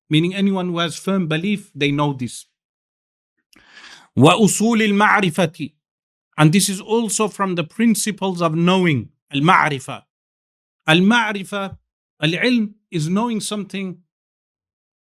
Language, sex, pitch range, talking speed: English, male, 145-190 Hz, 110 wpm